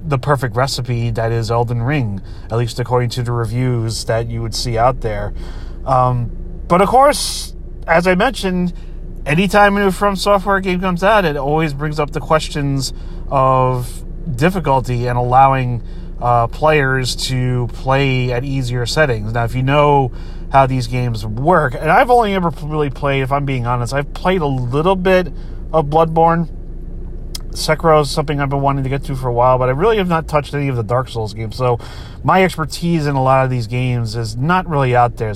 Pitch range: 120-155 Hz